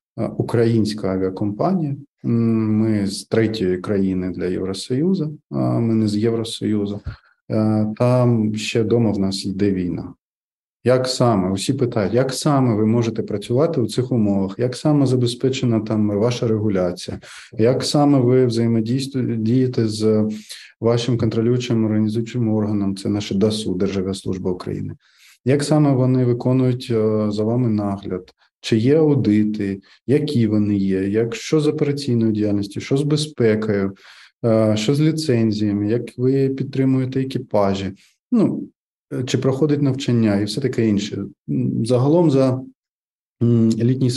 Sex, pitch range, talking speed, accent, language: male, 105-125 Hz, 125 wpm, native, Ukrainian